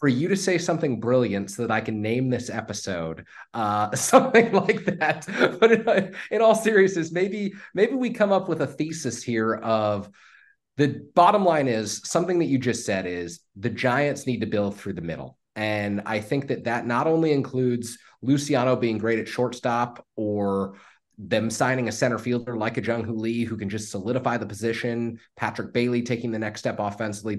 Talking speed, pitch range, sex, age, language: 190 wpm, 105-130 Hz, male, 30-49, English